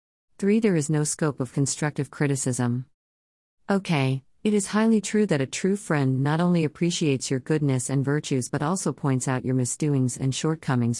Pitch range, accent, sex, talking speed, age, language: 130-160 Hz, American, female, 175 wpm, 40-59, English